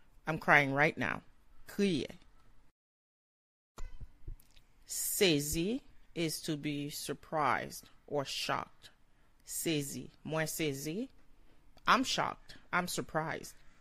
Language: English